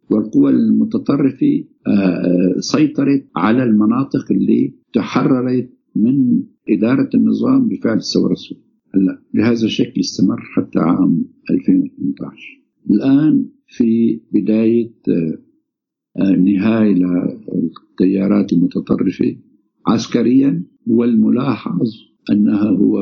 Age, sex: 50-69, male